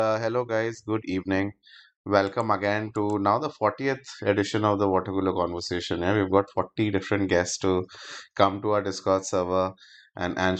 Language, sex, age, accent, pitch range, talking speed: English, male, 20-39, Indian, 95-110 Hz, 170 wpm